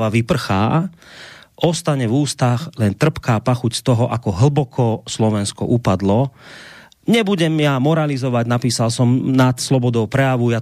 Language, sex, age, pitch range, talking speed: Slovak, male, 30-49, 110-140 Hz, 130 wpm